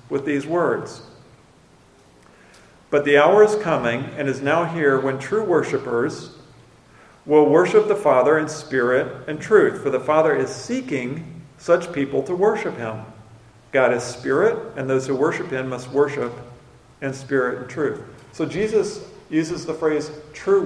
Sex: male